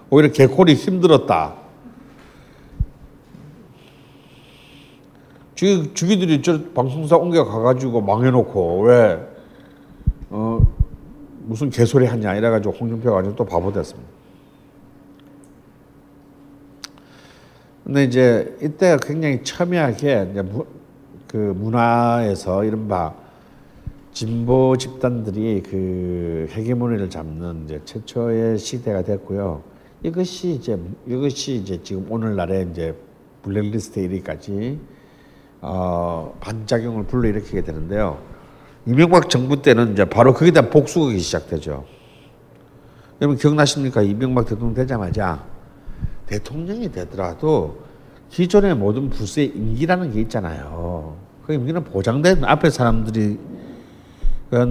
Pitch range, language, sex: 100-145 Hz, Korean, male